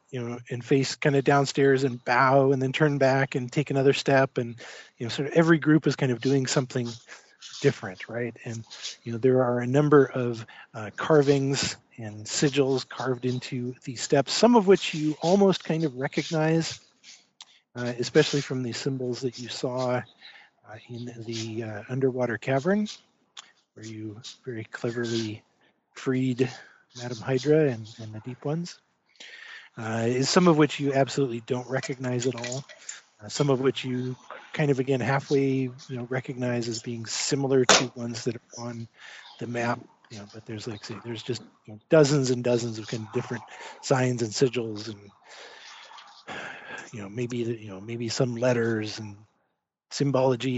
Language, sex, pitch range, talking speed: English, male, 115-140 Hz, 170 wpm